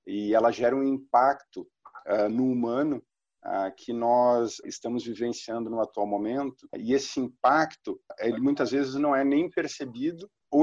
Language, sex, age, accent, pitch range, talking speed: Portuguese, male, 50-69, Brazilian, 115-165 Hz, 150 wpm